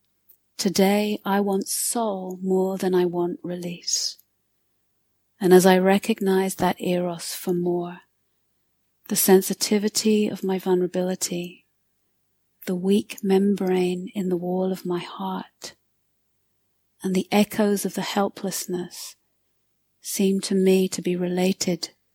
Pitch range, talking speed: 165-195 Hz, 115 wpm